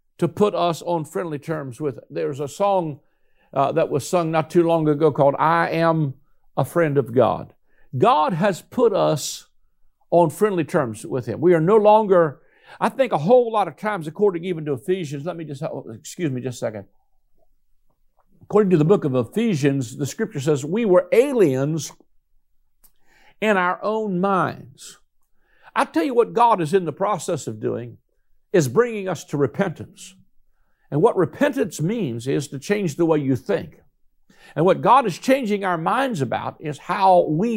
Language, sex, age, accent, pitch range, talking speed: English, male, 60-79, American, 150-205 Hz, 175 wpm